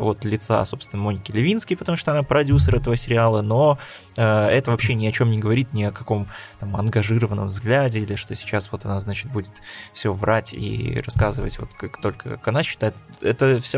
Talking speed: 195 wpm